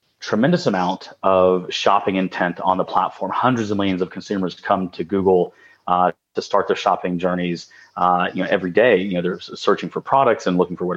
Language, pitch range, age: English, 90-105 Hz, 30-49